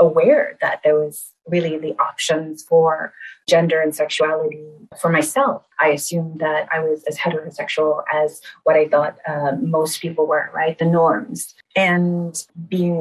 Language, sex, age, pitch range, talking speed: English, female, 30-49, 155-180 Hz, 150 wpm